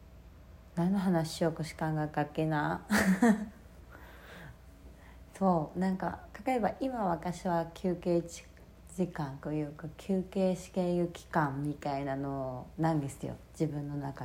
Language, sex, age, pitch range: Japanese, female, 40-59, 140-185 Hz